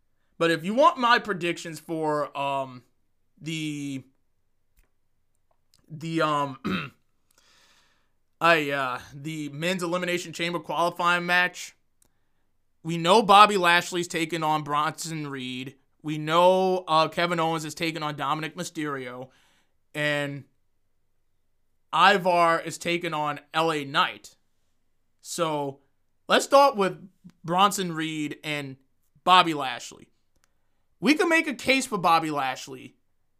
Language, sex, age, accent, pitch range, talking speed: English, male, 30-49, American, 135-175 Hz, 110 wpm